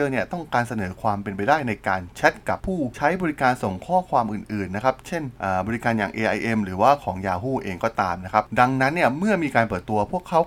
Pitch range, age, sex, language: 100-140 Hz, 20-39, male, Thai